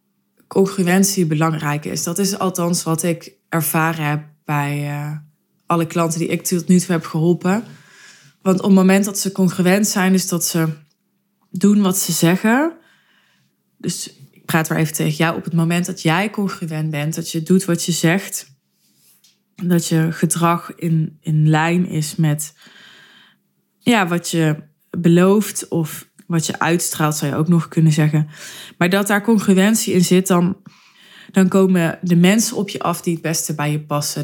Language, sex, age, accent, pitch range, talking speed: Dutch, female, 20-39, Dutch, 160-190 Hz, 170 wpm